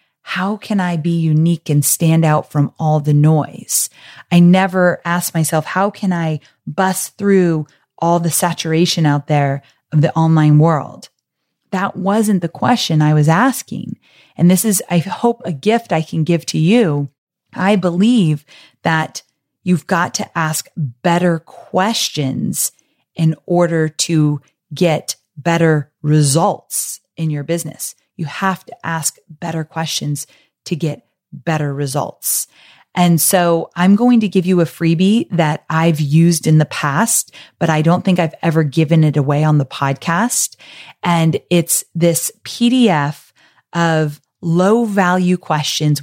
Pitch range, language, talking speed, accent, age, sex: 150-180 Hz, English, 145 wpm, American, 30-49, female